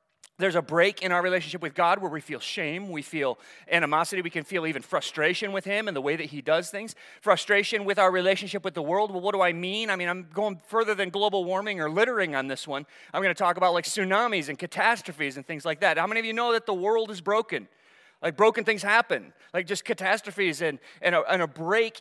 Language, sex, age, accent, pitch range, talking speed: English, male, 30-49, American, 150-195 Hz, 245 wpm